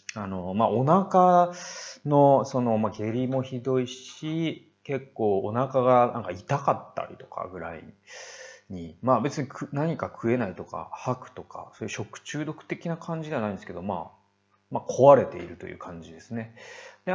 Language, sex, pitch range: Japanese, male, 100-140 Hz